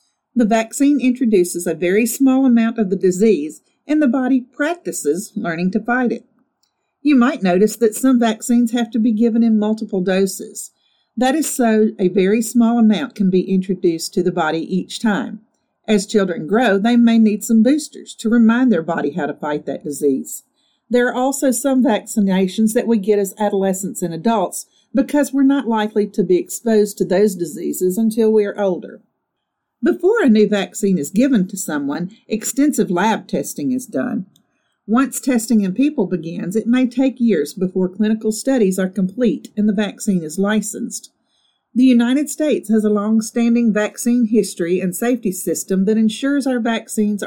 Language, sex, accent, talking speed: English, female, American, 175 wpm